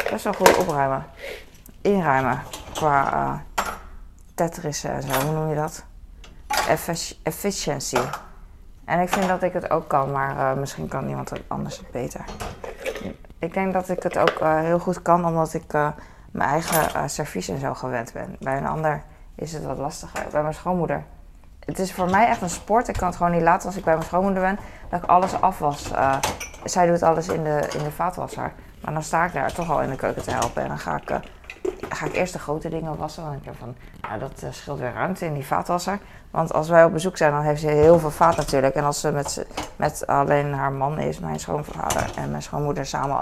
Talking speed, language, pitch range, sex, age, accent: 220 wpm, Dutch, 140-170 Hz, female, 20-39, Dutch